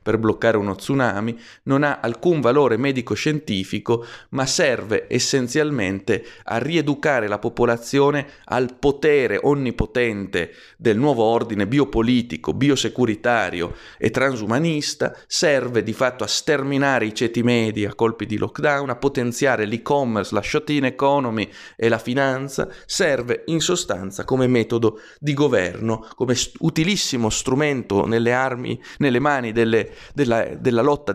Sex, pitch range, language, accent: male, 110-140 Hz, Italian, native